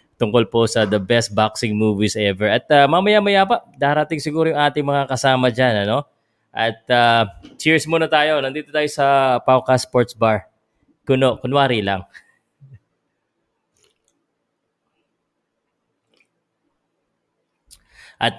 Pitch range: 110-150 Hz